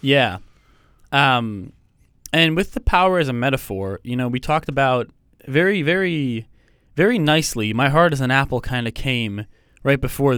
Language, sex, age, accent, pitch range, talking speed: English, male, 10-29, American, 110-145 Hz, 160 wpm